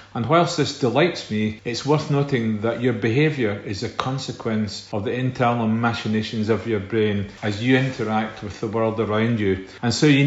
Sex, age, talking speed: male, 40-59, 185 wpm